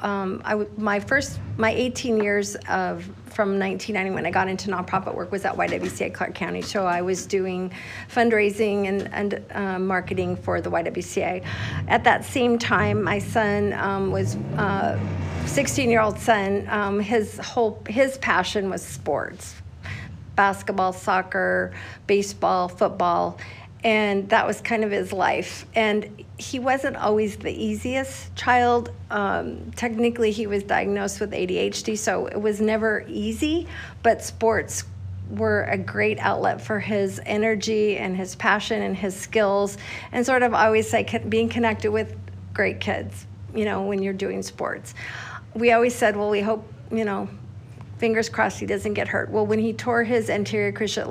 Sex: female